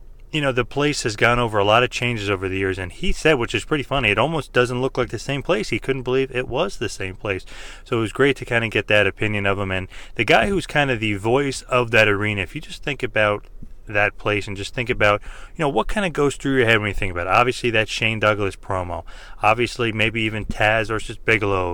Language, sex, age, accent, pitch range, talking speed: English, male, 30-49, American, 100-125 Hz, 265 wpm